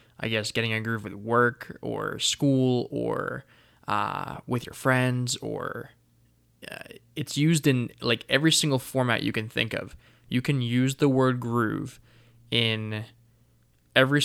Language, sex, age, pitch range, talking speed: English, male, 20-39, 110-130 Hz, 145 wpm